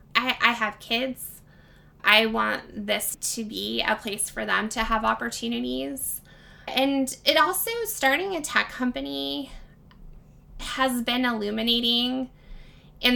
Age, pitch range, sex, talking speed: 20-39, 205-240 Hz, female, 120 wpm